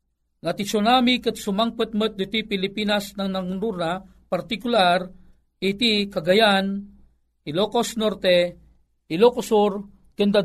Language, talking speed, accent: Filipino, 90 wpm, native